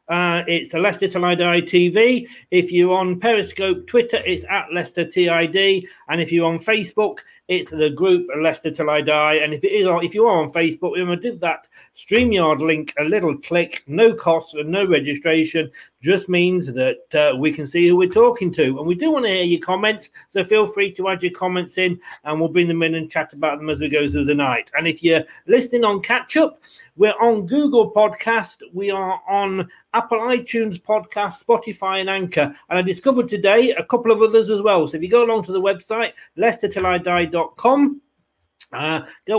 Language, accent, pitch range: English, British, 170-225 Hz